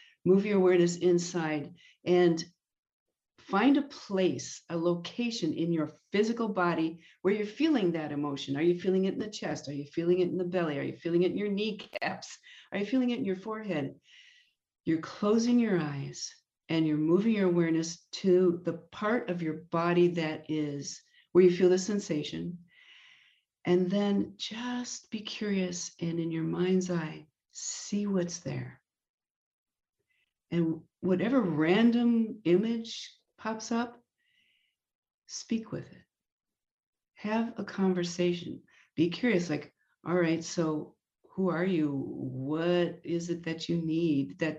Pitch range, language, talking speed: 165-220 Hz, English, 150 wpm